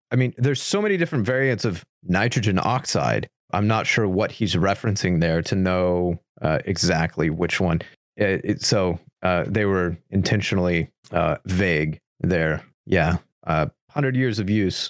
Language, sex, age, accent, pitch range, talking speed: English, male, 30-49, American, 90-130 Hz, 155 wpm